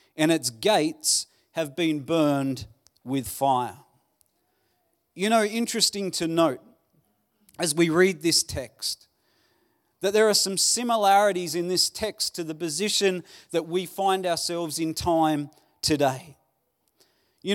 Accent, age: Australian, 40-59